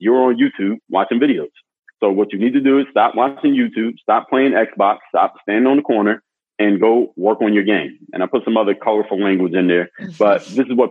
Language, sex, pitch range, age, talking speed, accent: English, male, 100-140 Hz, 30-49, 230 wpm, American